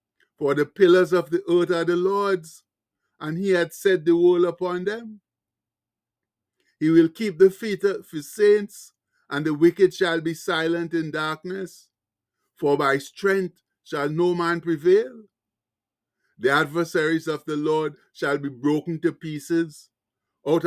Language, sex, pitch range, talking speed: English, male, 155-185 Hz, 150 wpm